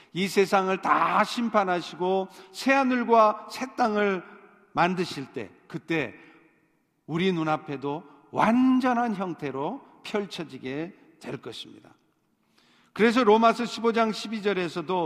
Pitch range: 160-215 Hz